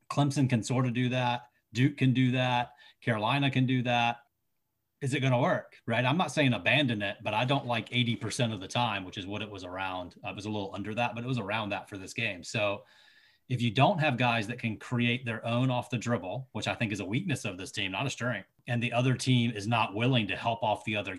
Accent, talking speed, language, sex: American, 260 wpm, English, male